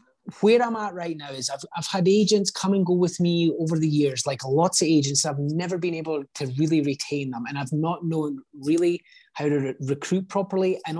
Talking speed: 225 wpm